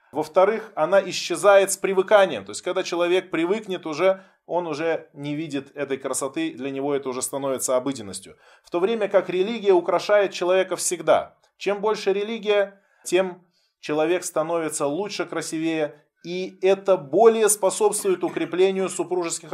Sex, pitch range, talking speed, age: male, 145-190 Hz, 140 wpm, 20-39